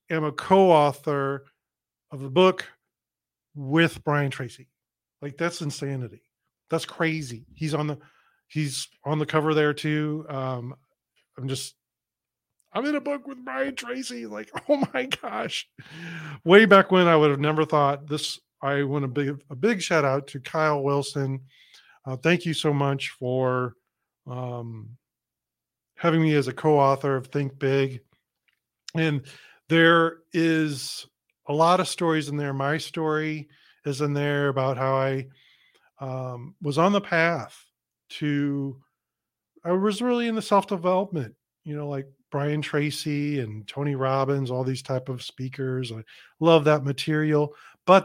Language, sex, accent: English, male, American